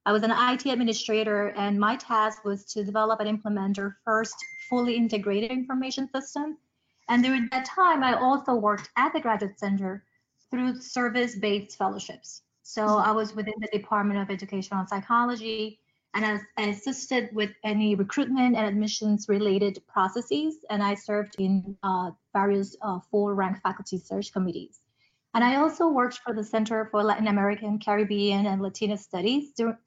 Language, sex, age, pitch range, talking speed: English, female, 30-49, 205-240 Hz, 160 wpm